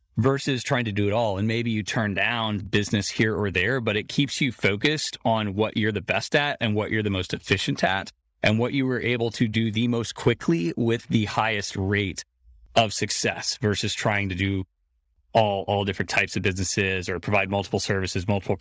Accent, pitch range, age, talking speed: American, 95-115 Hz, 30-49, 205 wpm